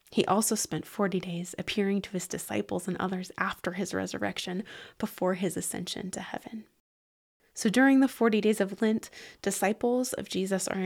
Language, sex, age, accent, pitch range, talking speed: English, female, 20-39, American, 185-225 Hz, 165 wpm